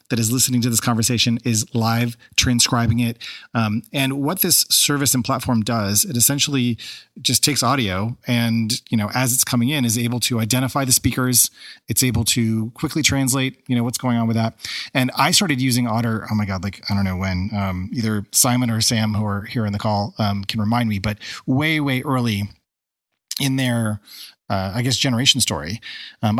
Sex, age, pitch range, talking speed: male, 30-49, 110-130 Hz, 200 wpm